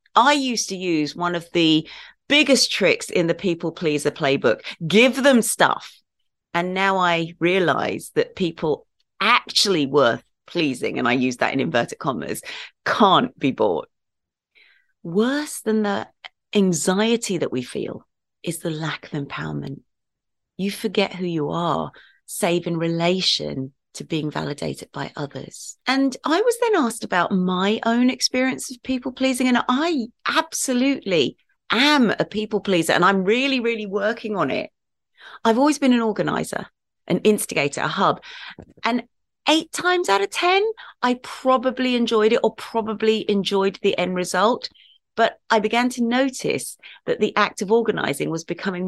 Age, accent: 30-49, British